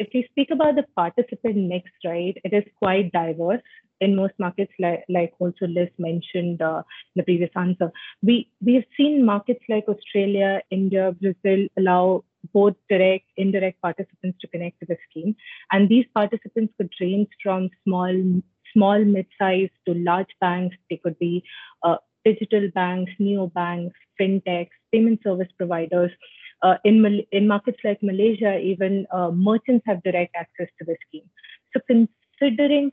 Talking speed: 160 wpm